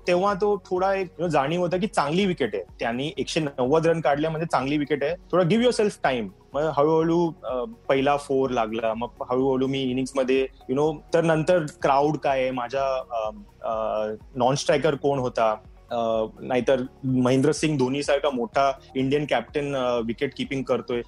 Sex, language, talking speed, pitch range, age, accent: male, Marathi, 155 wpm, 130-160 Hz, 30-49, native